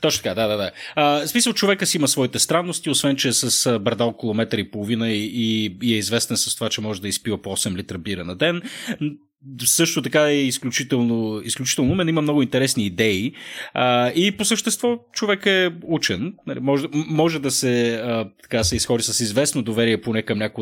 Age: 30-49